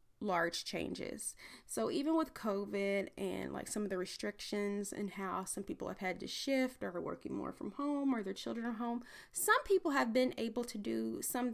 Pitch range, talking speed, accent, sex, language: 190-245 Hz, 205 wpm, American, female, English